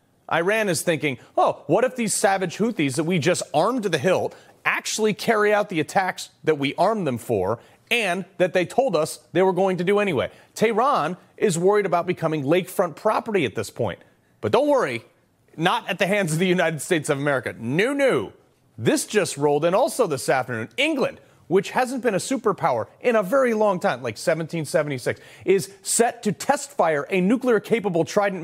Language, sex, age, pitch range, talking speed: English, male, 30-49, 175-240 Hz, 195 wpm